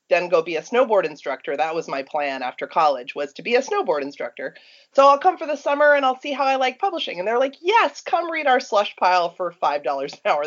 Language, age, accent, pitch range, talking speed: English, 30-49, American, 150-230 Hz, 250 wpm